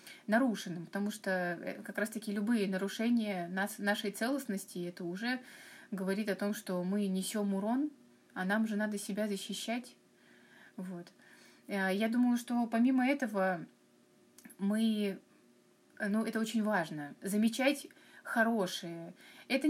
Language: Russian